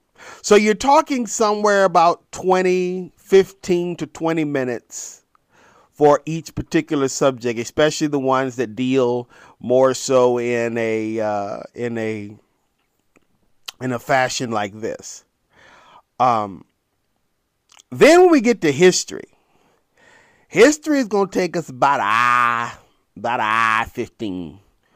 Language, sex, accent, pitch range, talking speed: English, male, American, 125-180 Hz, 120 wpm